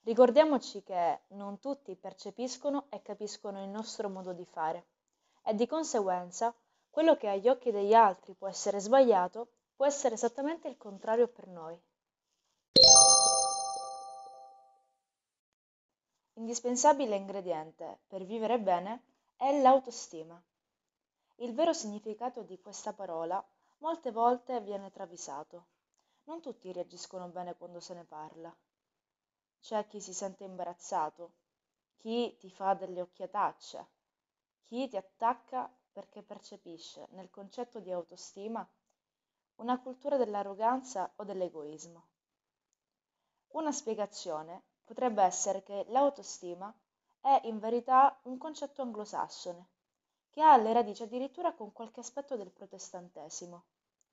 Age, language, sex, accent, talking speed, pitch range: 20-39, Italian, female, native, 115 wpm, 180-245 Hz